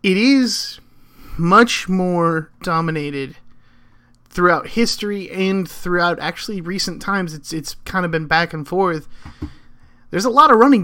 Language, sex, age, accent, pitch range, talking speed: English, male, 30-49, American, 155-185 Hz, 140 wpm